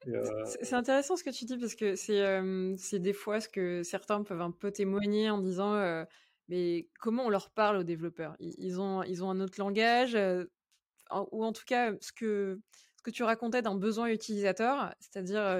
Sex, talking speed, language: female, 200 wpm, French